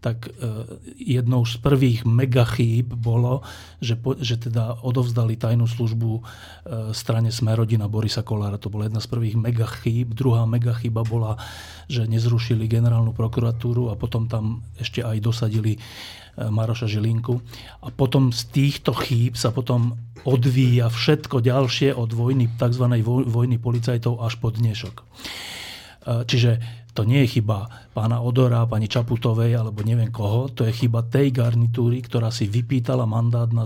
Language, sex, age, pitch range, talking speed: English, male, 40-59, 115-125 Hz, 145 wpm